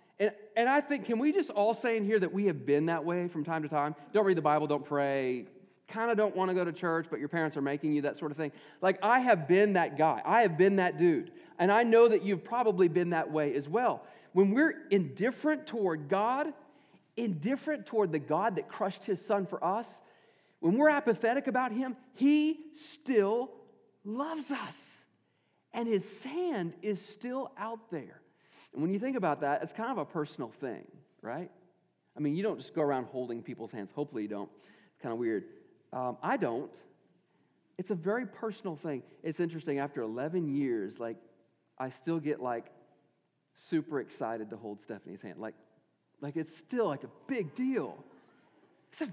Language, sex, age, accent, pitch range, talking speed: English, male, 40-59, American, 150-235 Hz, 195 wpm